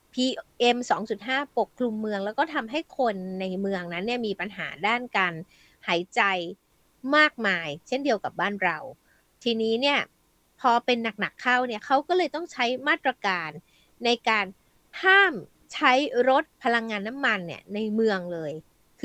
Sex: female